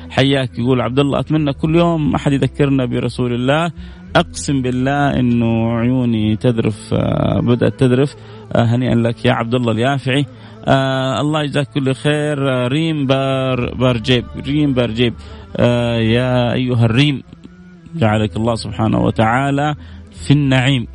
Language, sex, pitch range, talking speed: Arabic, male, 115-145 Hz, 125 wpm